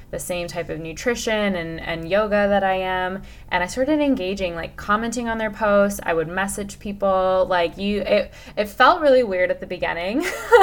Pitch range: 175-230 Hz